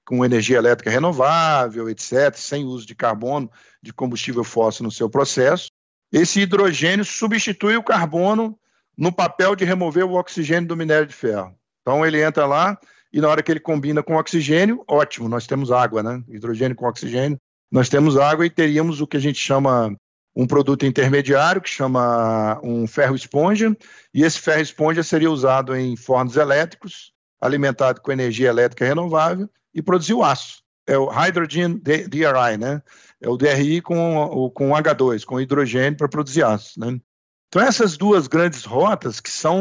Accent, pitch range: Brazilian, 130-180 Hz